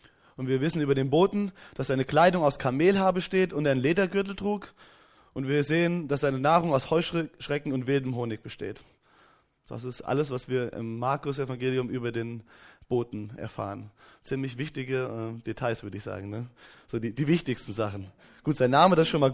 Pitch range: 120-160 Hz